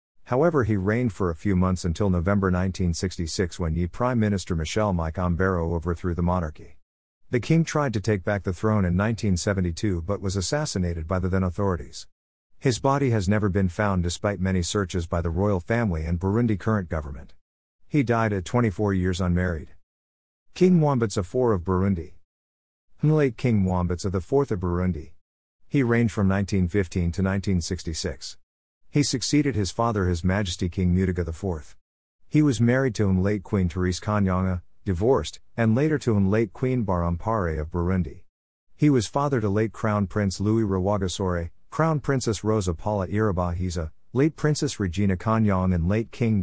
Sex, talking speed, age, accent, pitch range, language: male, 165 wpm, 50-69, American, 85-110 Hz, English